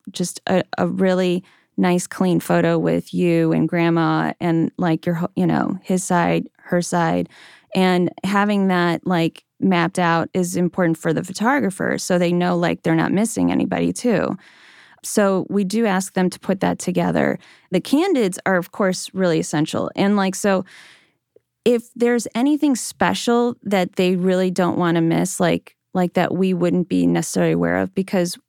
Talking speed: 170 wpm